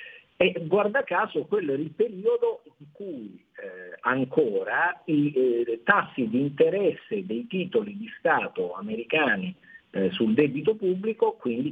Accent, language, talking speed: native, Italian, 135 wpm